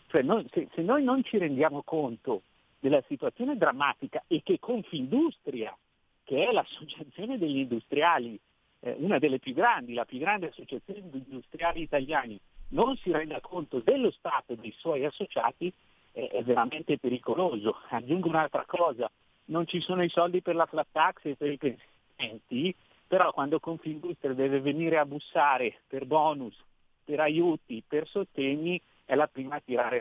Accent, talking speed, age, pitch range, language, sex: native, 150 wpm, 50-69, 135-175 Hz, Italian, male